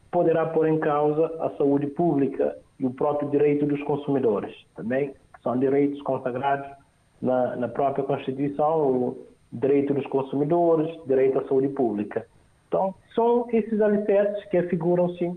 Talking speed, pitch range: 135 wpm, 145-195 Hz